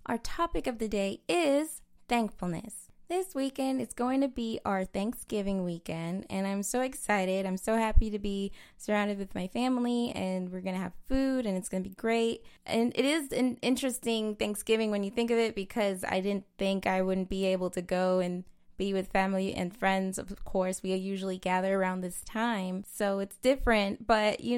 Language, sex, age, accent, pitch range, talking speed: English, female, 10-29, American, 185-225 Hz, 200 wpm